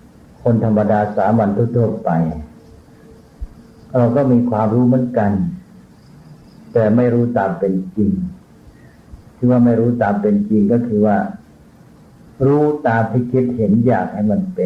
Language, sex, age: Thai, male, 60-79